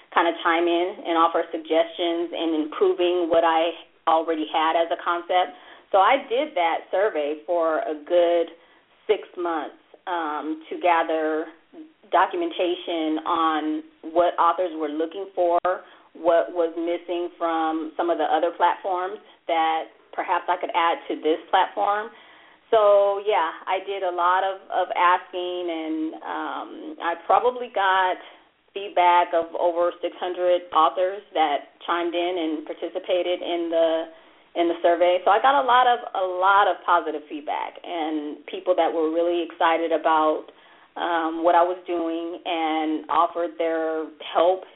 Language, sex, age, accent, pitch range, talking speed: English, female, 30-49, American, 160-180 Hz, 145 wpm